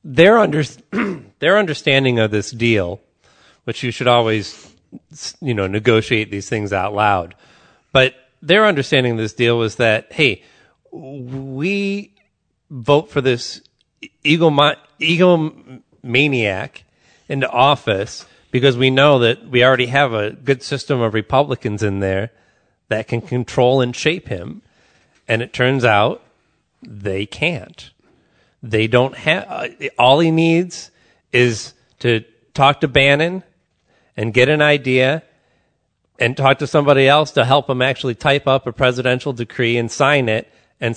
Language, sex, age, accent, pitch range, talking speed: English, male, 30-49, American, 110-140 Hz, 140 wpm